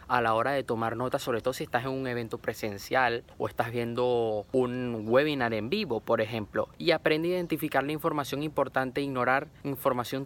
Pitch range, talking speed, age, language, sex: 115-145 Hz, 195 wpm, 20-39, Spanish, male